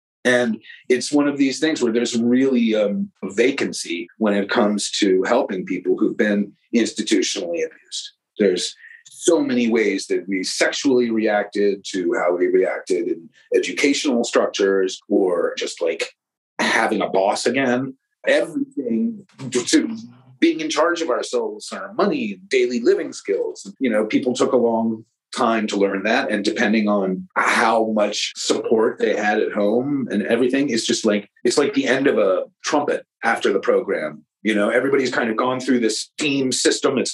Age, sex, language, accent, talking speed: 40-59, male, English, American, 170 wpm